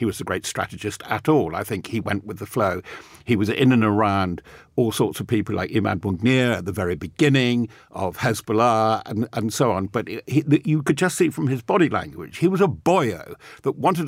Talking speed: 215 wpm